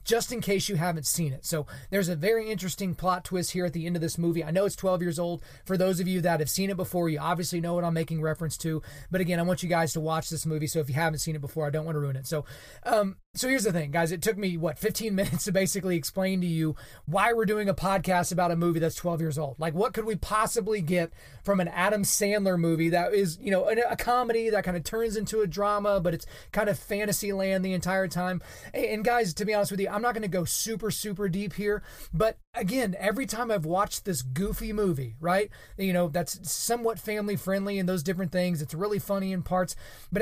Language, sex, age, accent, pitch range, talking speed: English, male, 30-49, American, 165-205 Hz, 255 wpm